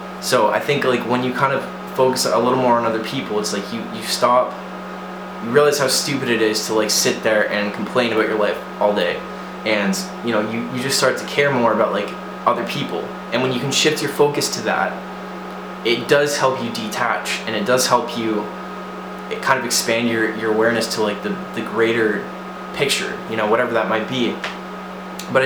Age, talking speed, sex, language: 20-39, 210 wpm, male, English